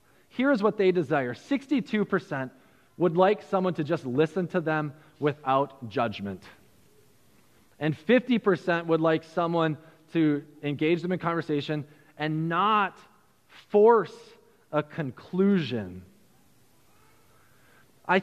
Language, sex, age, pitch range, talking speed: English, male, 20-39, 180-270 Hz, 100 wpm